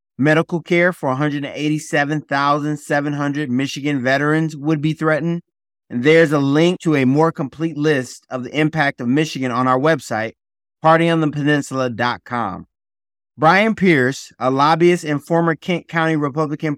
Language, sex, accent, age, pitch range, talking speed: English, male, American, 30-49, 135-165 Hz, 130 wpm